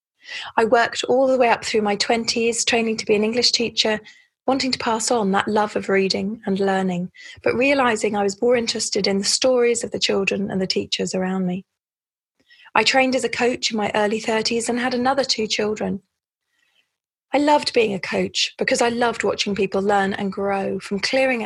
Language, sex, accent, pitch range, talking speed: English, female, British, 195-250 Hz, 200 wpm